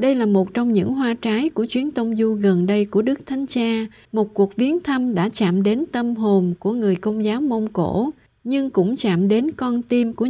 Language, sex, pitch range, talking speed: Vietnamese, female, 200-255 Hz, 225 wpm